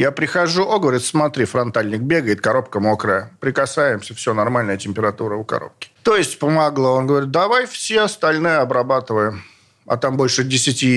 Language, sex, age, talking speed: Russian, male, 40-59, 155 wpm